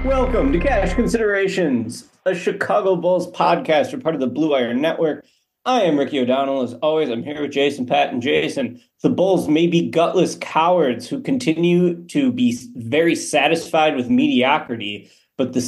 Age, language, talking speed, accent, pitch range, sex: 30-49, English, 165 wpm, American, 135-190 Hz, male